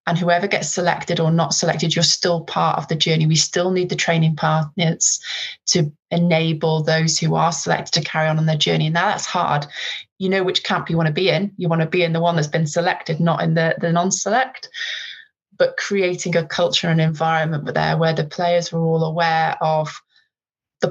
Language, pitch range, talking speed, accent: English, 160-185 Hz, 210 wpm, British